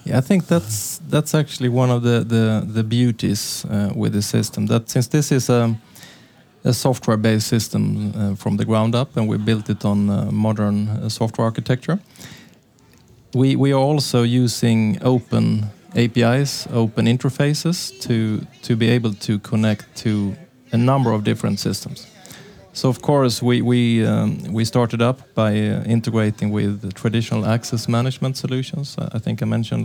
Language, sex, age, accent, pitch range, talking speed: Danish, male, 20-39, Norwegian, 110-130 Hz, 165 wpm